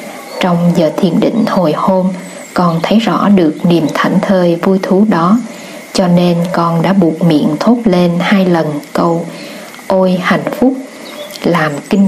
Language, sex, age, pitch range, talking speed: Vietnamese, female, 20-39, 175-235 Hz, 160 wpm